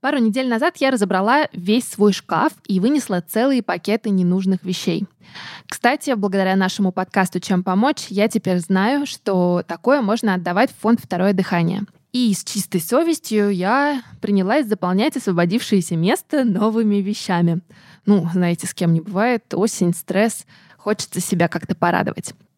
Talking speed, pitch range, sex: 145 wpm, 185-230 Hz, female